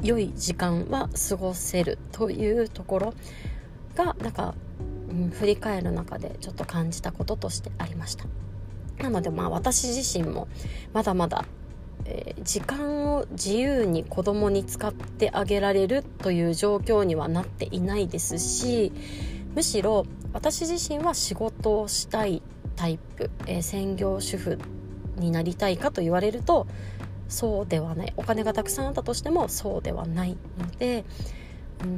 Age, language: 20-39, Japanese